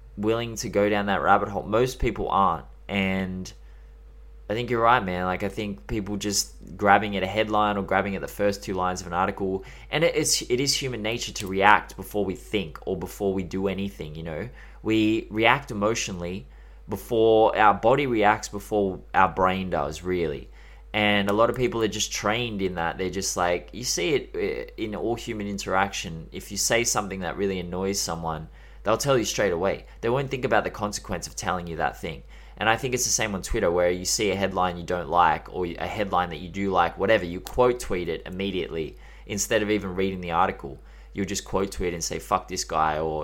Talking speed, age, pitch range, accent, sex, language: 215 wpm, 20-39, 90-105 Hz, Australian, male, English